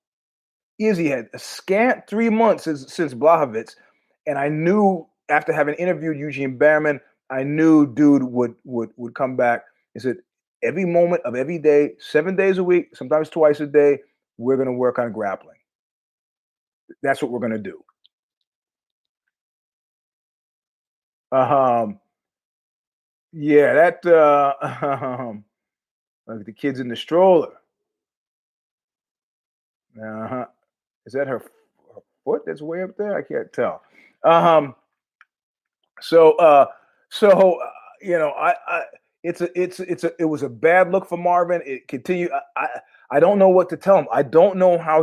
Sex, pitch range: male, 135-180 Hz